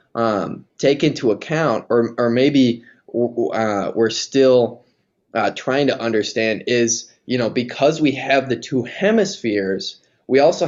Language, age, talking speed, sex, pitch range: English, 10-29, 140 wpm, male, 110-140 Hz